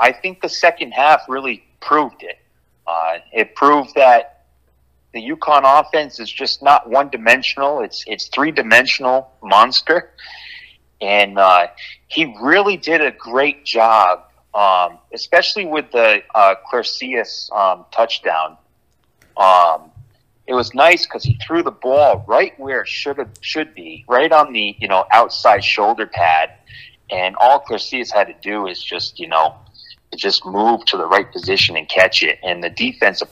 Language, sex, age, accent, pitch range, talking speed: English, male, 30-49, American, 90-135 Hz, 155 wpm